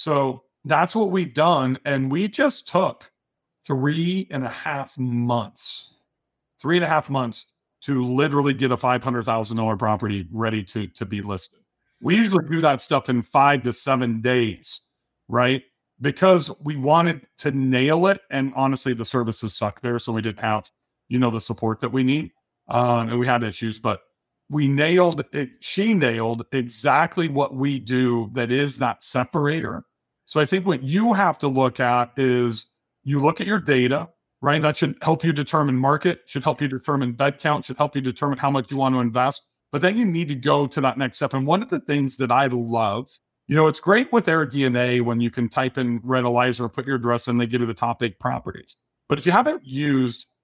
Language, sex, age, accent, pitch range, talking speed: English, male, 50-69, American, 120-150 Hz, 205 wpm